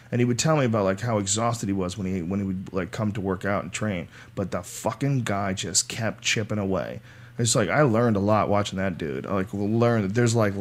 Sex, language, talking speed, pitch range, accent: male, English, 260 wpm, 100-120 Hz, American